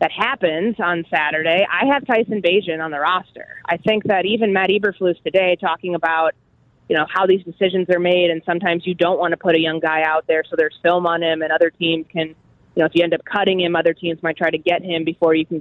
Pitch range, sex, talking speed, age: 165-195 Hz, female, 255 wpm, 20-39